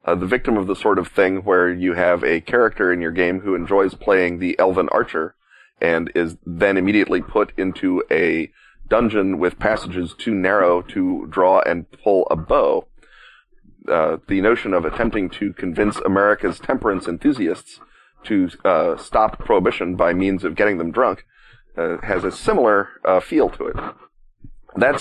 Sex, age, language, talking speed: male, 30-49, English, 165 wpm